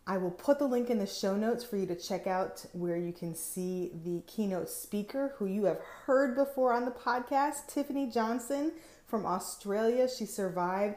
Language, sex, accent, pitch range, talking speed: English, female, American, 185-235 Hz, 190 wpm